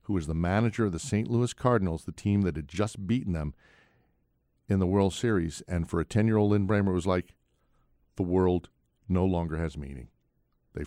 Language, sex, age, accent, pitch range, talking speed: English, male, 50-69, American, 80-105 Hz, 200 wpm